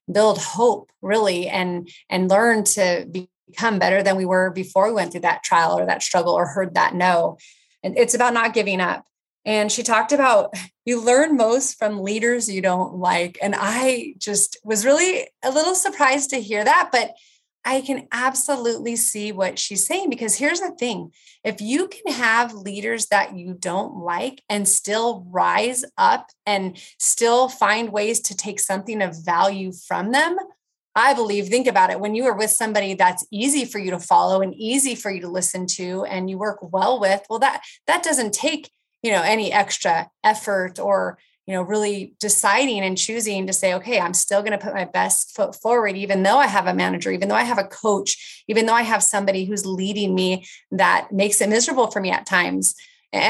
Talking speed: 200 wpm